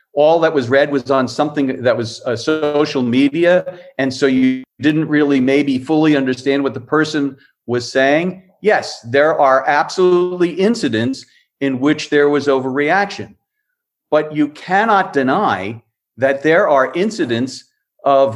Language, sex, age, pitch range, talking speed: English, male, 40-59, 125-155 Hz, 145 wpm